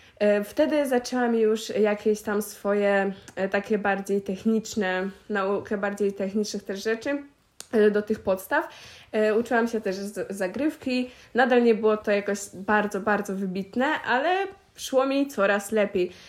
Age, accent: 20-39, native